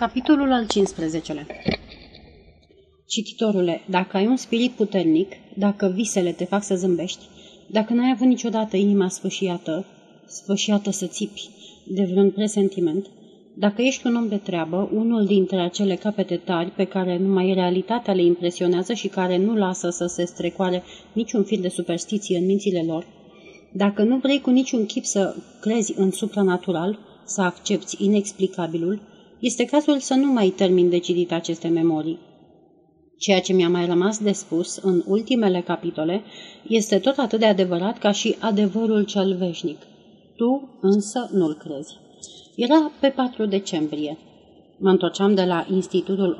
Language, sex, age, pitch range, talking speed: Romanian, female, 30-49, 180-215 Hz, 145 wpm